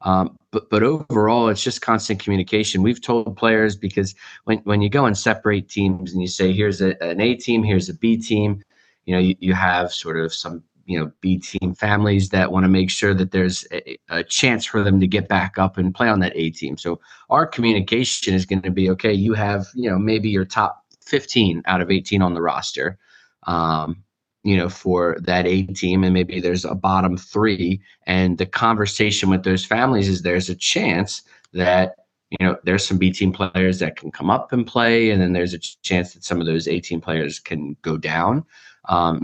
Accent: American